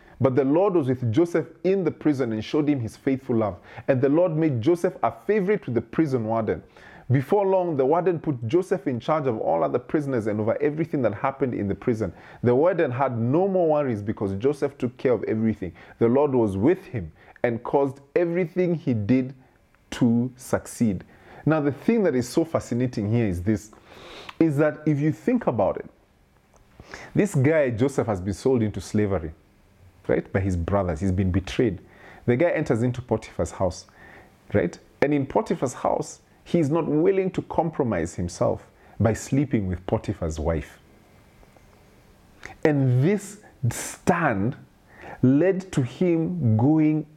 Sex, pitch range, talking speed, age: male, 110-155 Hz, 165 wpm, 30-49